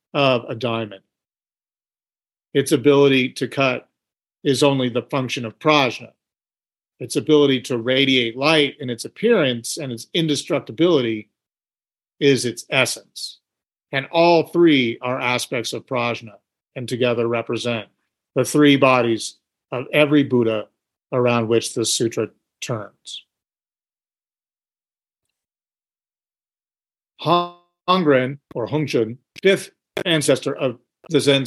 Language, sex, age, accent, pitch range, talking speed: English, male, 50-69, American, 125-155 Hz, 105 wpm